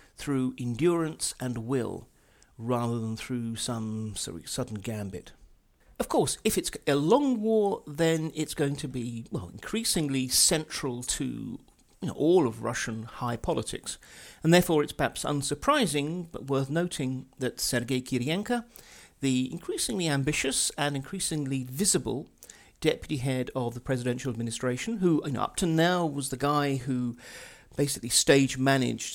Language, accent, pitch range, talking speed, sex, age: English, British, 125-155 Hz, 140 wpm, male, 50-69